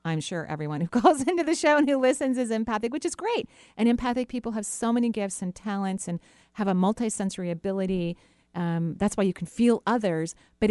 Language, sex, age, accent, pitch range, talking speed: English, female, 40-59, American, 170-225 Hz, 215 wpm